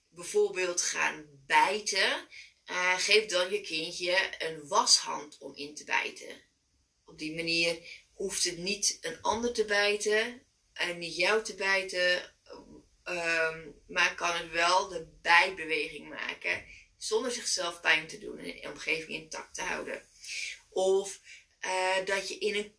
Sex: female